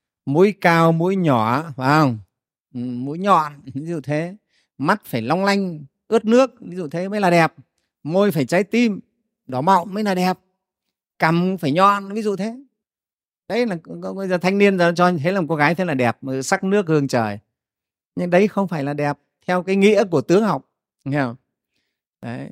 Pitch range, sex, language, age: 140-195 Hz, male, Vietnamese, 30-49